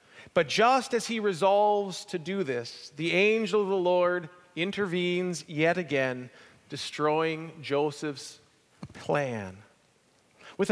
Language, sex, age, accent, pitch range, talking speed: English, male, 40-59, American, 155-200 Hz, 110 wpm